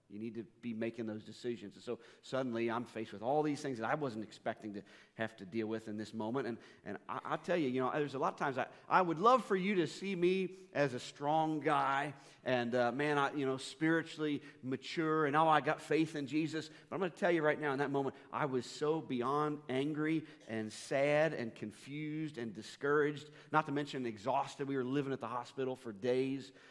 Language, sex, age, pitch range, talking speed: English, male, 40-59, 115-145 Hz, 230 wpm